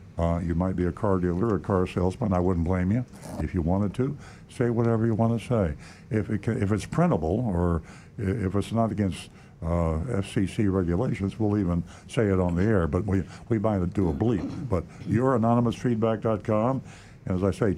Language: English